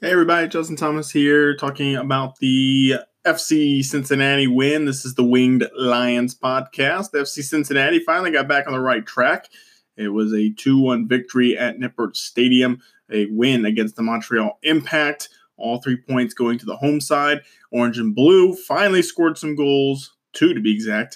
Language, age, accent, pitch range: English, 20-39, American, 115-145 Hz